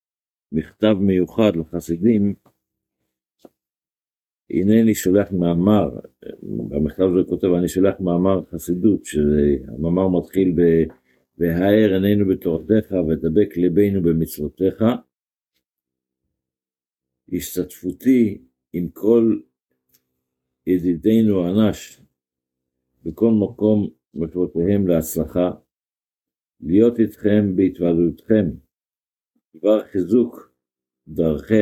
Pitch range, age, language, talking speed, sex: 75-100 Hz, 50-69, Hebrew, 70 wpm, male